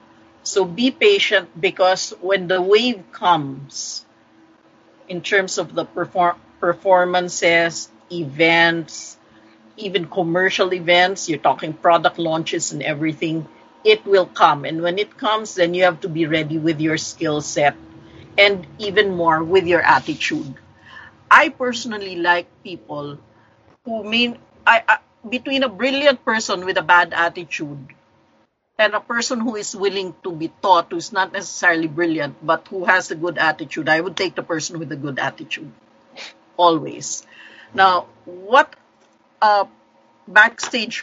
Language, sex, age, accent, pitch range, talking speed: English, female, 50-69, Filipino, 165-205 Hz, 135 wpm